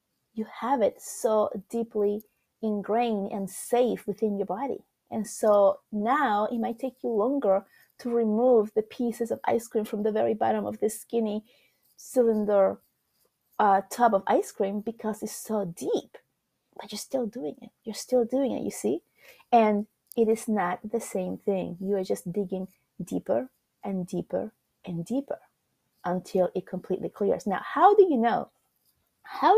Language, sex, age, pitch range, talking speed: English, female, 30-49, 200-245 Hz, 160 wpm